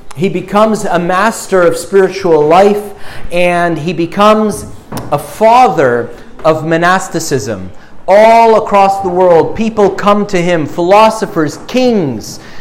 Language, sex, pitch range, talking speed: English, male, 160-215 Hz, 115 wpm